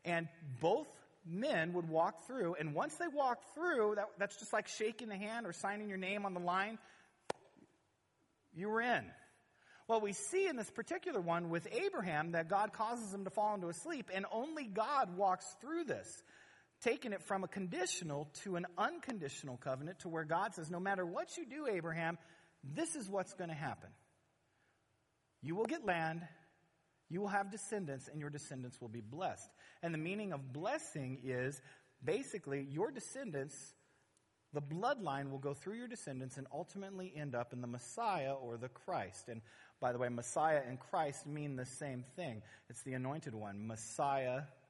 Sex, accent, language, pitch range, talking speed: male, American, English, 135-200 Hz, 180 wpm